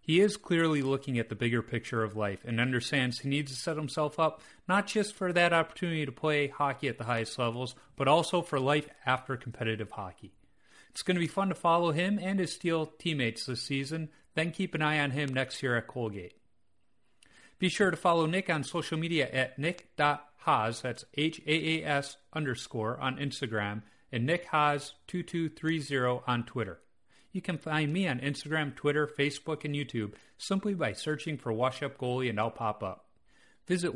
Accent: American